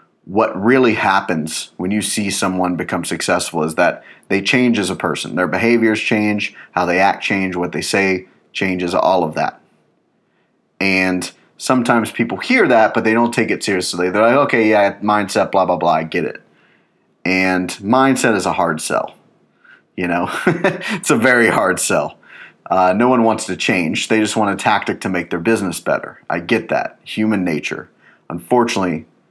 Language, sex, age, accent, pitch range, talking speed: English, male, 30-49, American, 90-110 Hz, 180 wpm